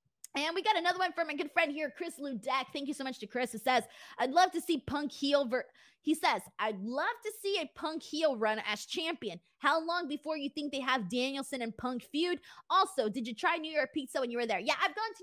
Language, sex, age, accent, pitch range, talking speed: English, female, 20-39, American, 225-305 Hz, 250 wpm